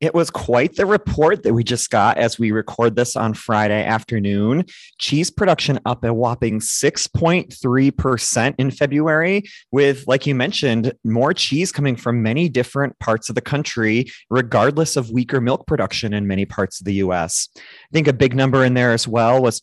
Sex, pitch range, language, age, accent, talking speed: male, 110-135 Hz, English, 30-49, American, 180 wpm